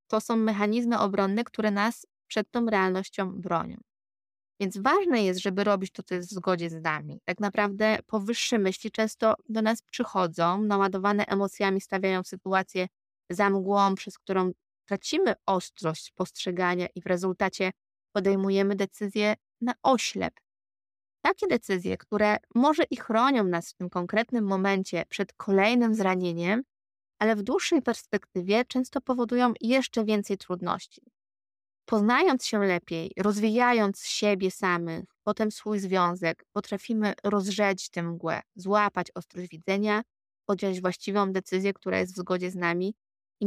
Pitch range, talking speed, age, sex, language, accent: 180-215 Hz, 135 wpm, 20-39, female, Polish, native